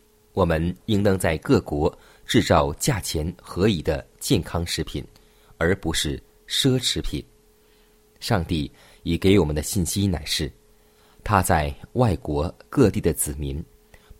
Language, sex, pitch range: Chinese, male, 80-110 Hz